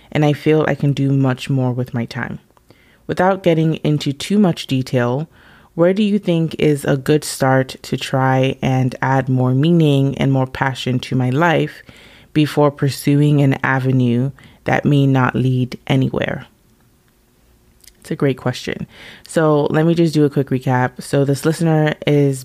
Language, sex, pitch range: English, female, 130-145 Hz